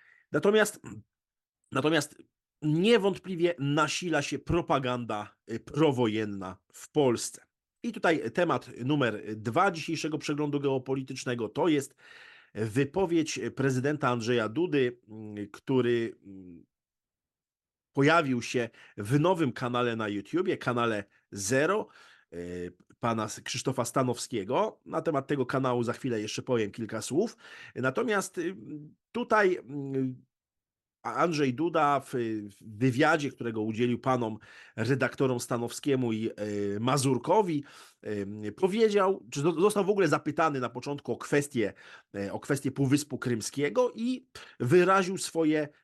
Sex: male